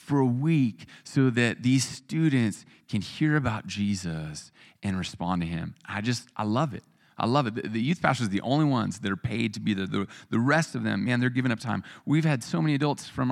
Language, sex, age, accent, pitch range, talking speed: English, male, 30-49, American, 105-135 Hz, 235 wpm